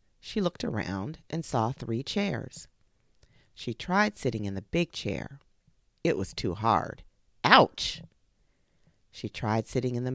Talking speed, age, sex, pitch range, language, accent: 140 wpm, 40-59, female, 105-170 Hz, English, American